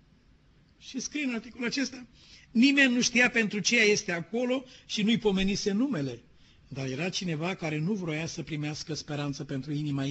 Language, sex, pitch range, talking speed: Romanian, male, 150-205 Hz, 160 wpm